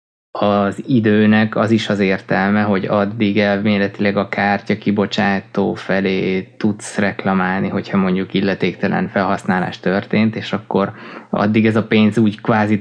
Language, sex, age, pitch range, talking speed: Hungarian, male, 20-39, 100-110 Hz, 130 wpm